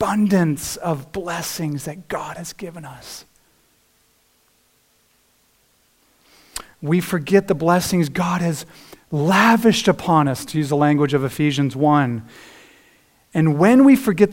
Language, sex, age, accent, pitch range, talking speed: English, male, 40-59, American, 155-235 Hz, 115 wpm